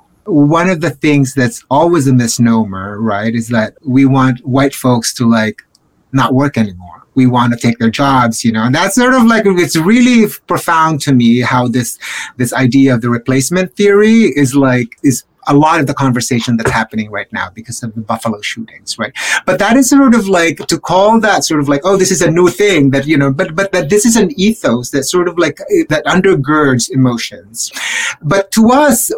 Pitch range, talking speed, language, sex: 125-180 Hz, 210 wpm, English, male